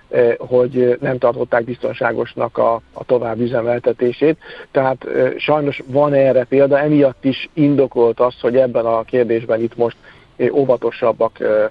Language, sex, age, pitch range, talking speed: Hungarian, male, 50-69, 120-135 Hz, 125 wpm